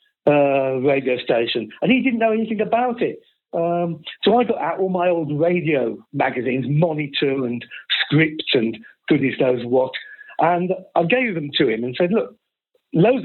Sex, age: male, 50-69